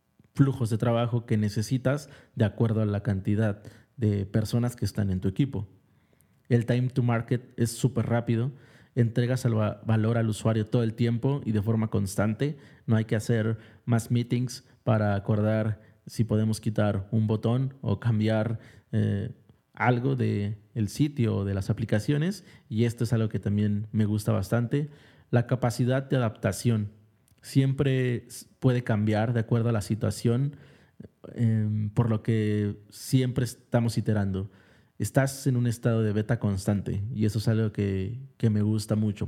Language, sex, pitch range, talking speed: Spanish, male, 105-125 Hz, 160 wpm